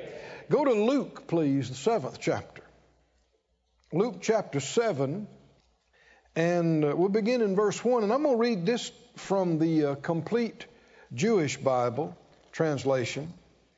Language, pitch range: English, 170-240 Hz